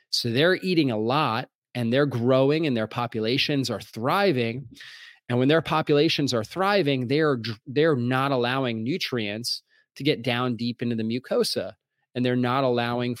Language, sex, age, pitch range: English, male, 30-49, 115-140 Hz